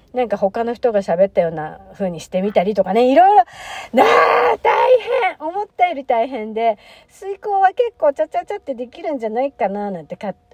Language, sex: Japanese, female